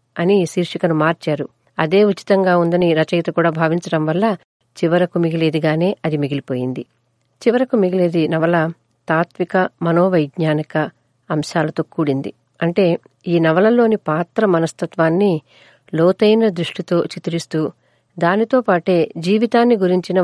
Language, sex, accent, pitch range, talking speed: Telugu, female, native, 160-200 Hz, 100 wpm